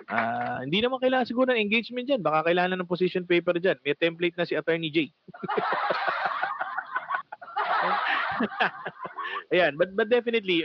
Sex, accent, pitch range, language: male, Filipino, 135-185 Hz, English